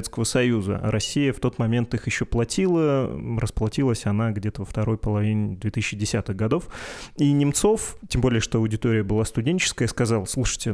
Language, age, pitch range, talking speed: Russian, 20-39, 110-130 Hz, 145 wpm